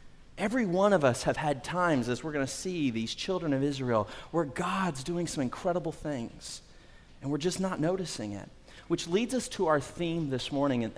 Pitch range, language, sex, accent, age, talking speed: 120-150 Hz, English, male, American, 30-49, 200 wpm